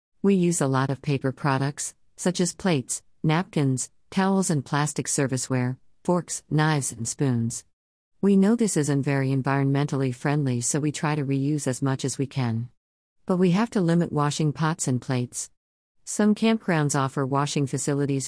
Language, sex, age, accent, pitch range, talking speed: English, female, 50-69, American, 130-165 Hz, 165 wpm